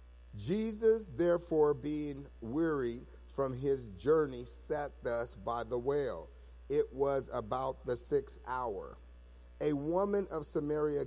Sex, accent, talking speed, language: male, American, 120 wpm, English